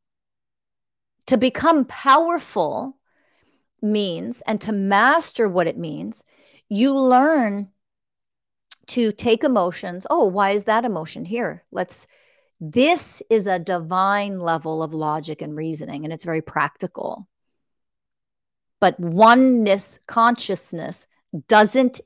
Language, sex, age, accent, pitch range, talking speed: English, female, 50-69, American, 180-240 Hz, 105 wpm